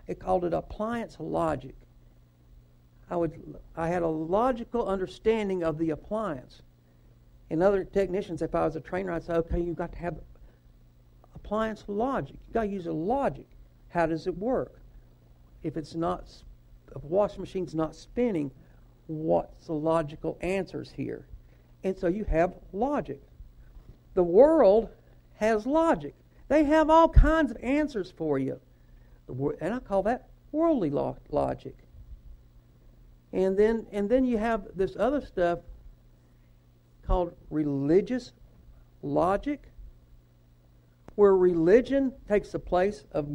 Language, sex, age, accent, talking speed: English, male, 60-79, American, 130 wpm